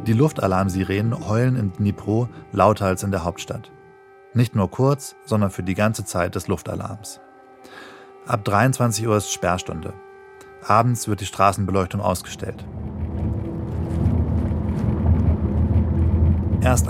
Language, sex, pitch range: German, male, 95-110 Hz